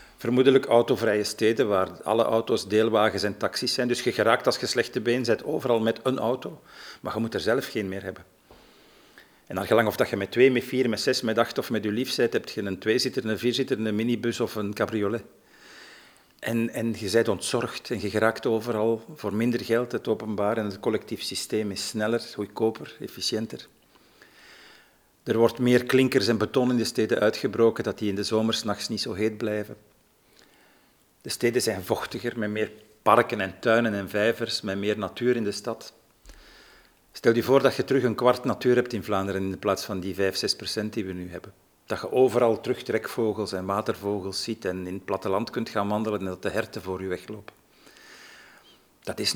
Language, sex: Dutch, male